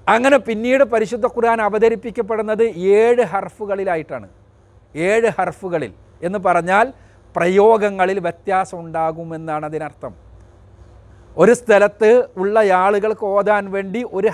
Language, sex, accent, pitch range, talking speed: Malayalam, male, native, 145-210 Hz, 90 wpm